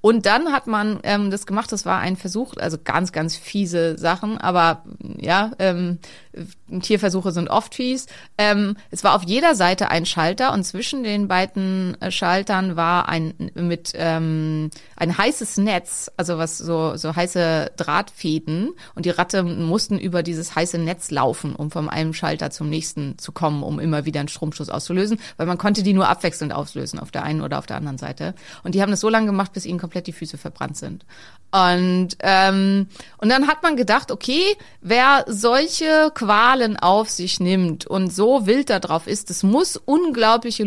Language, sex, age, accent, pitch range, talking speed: German, female, 30-49, German, 165-215 Hz, 180 wpm